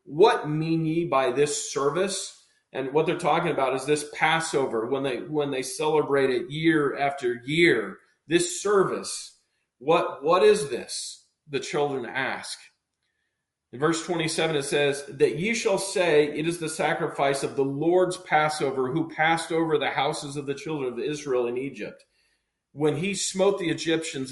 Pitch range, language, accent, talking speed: 135-165 Hz, English, American, 165 wpm